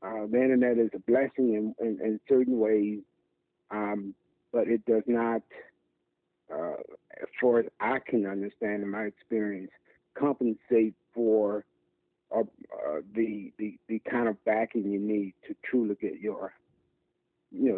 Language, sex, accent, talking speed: English, male, American, 145 wpm